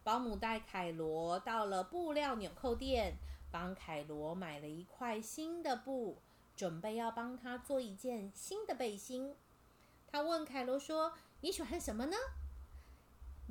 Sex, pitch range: female, 185-290 Hz